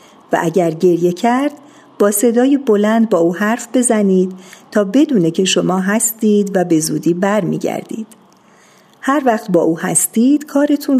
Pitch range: 175-230 Hz